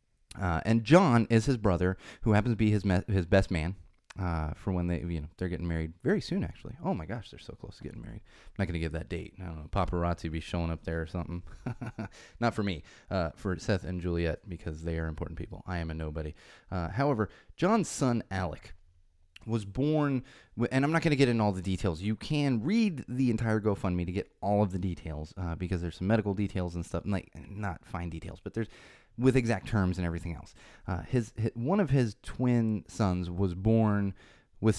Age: 30-49